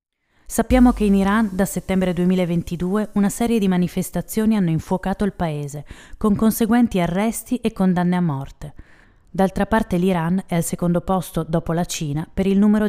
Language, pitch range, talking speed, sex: Italian, 165-195 Hz, 165 wpm, female